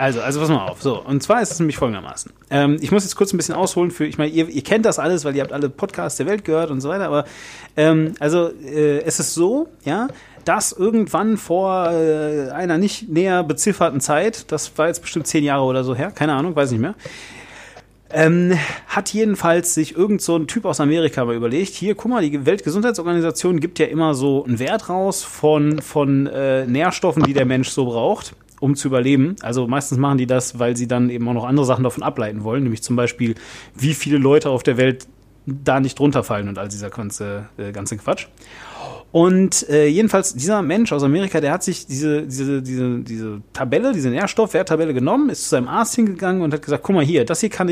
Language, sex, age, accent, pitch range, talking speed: German, male, 30-49, German, 135-180 Hz, 220 wpm